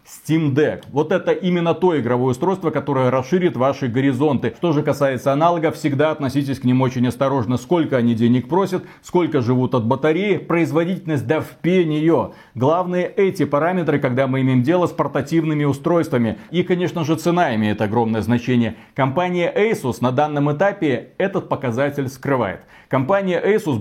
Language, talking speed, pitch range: Russian, 155 wpm, 130-170 Hz